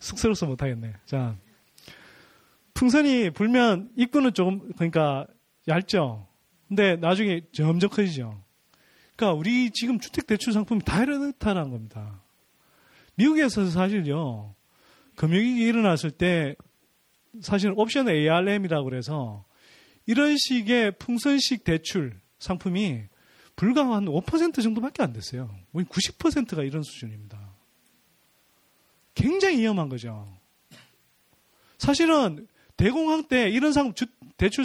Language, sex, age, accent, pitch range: Korean, male, 30-49, native, 145-245 Hz